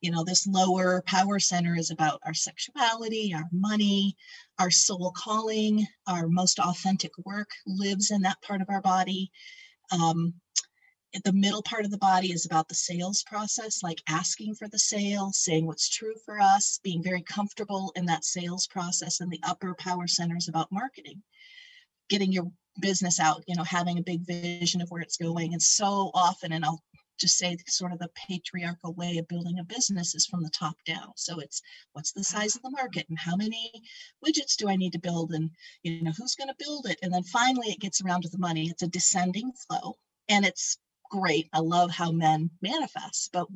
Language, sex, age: English, female, 40-59